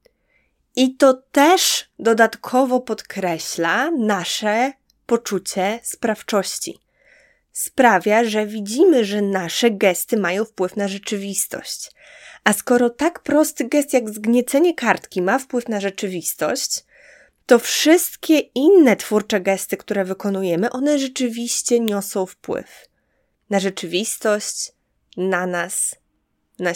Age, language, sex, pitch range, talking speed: 20-39, Polish, female, 175-230 Hz, 105 wpm